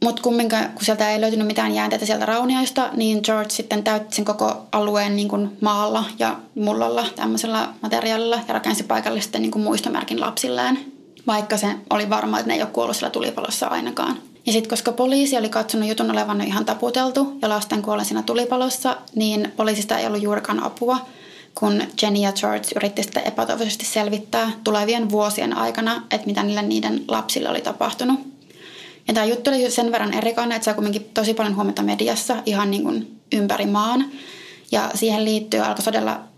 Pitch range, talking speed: 210-235 Hz, 170 wpm